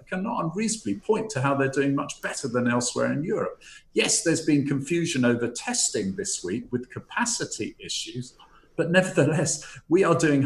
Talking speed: 165 wpm